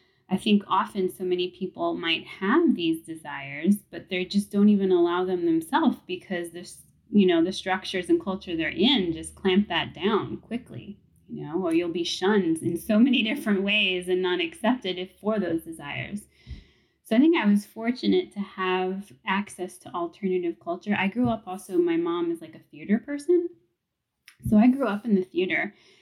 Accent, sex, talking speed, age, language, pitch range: American, female, 185 wpm, 20-39, English, 180-240 Hz